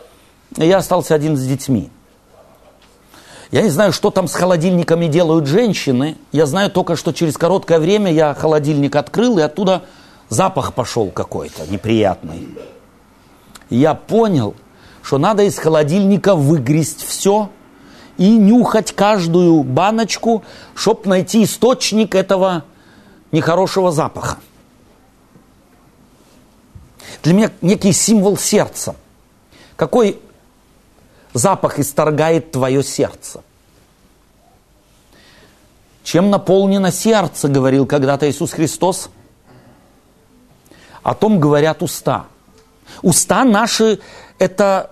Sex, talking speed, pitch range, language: male, 100 wpm, 155-215 Hz, Russian